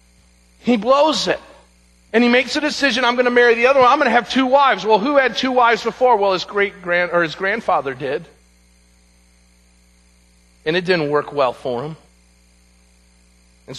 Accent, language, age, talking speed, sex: American, English, 40-59, 180 wpm, male